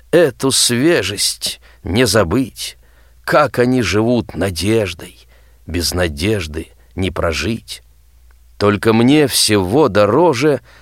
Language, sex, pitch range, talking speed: Russian, male, 80-125 Hz, 90 wpm